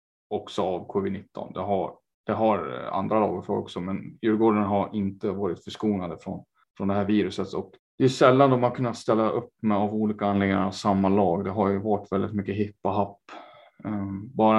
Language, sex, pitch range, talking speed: Swedish, male, 100-115 Hz, 195 wpm